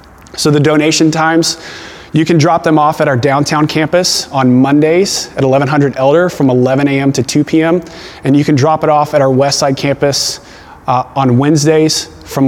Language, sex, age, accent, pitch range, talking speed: English, male, 30-49, American, 130-150 Hz, 190 wpm